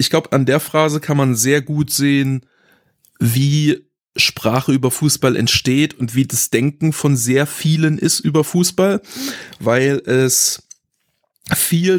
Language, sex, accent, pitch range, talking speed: German, male, German, 125-150 Hz, 140 wpm